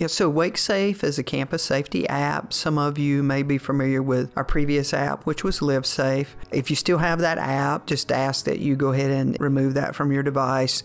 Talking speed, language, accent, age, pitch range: 220 wpm, English, American, 50-69, 135-150 Hz